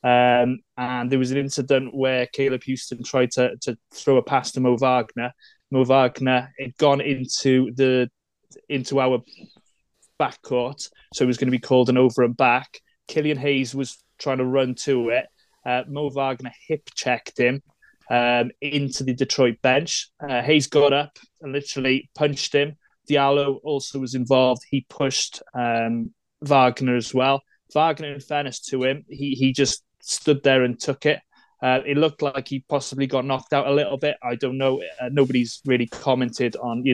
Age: 20-39